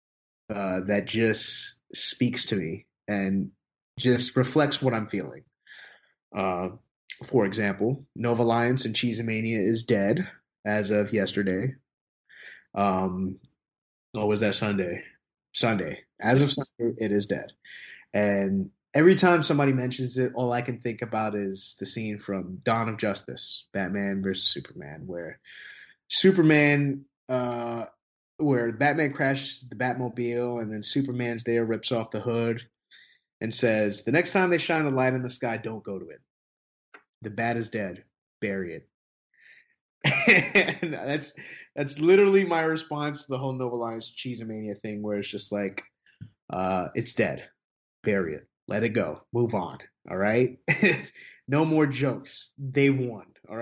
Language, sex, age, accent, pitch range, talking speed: English, male, 30-49, American, 105-135 Hz, 145 wpm